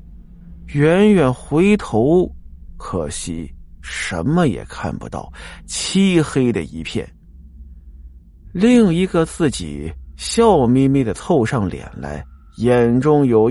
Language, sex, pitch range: Chinese, male, 110-185 Hz